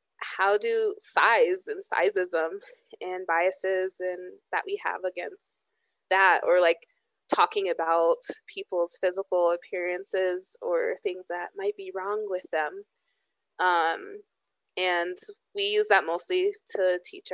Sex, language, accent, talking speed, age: female, English, American, 125 wpm, 20-39